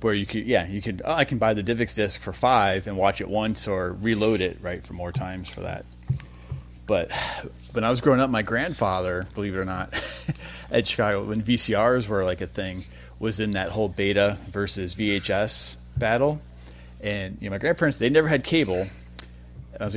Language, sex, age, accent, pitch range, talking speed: English, male, 20-39, American, 90-115 Hz, 200 wpm